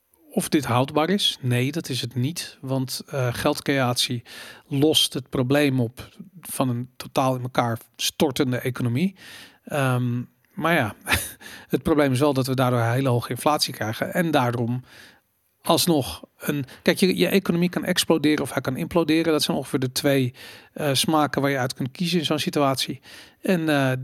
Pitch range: 125-155 Hz